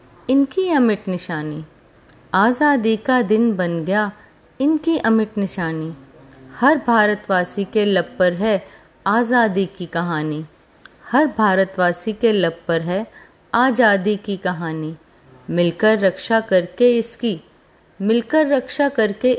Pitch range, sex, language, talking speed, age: 180-245 Hz, female, Hindi, 110 wpm, 30-49